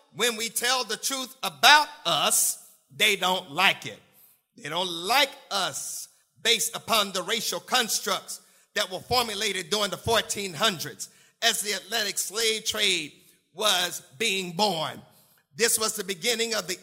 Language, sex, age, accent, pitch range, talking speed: English, male, 50-69, American, 185-240 Hz, 145 wpm